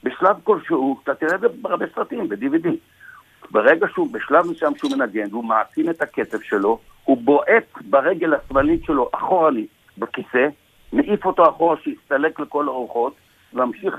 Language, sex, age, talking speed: Hebrew, male, 60-79, 140 wpm